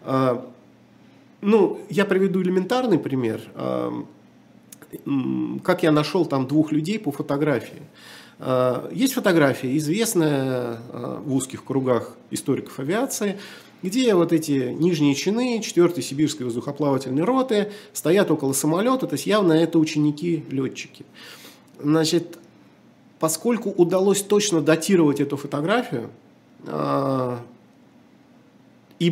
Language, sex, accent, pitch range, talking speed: Russian, male, native, 130-175 Hz, 95 wpm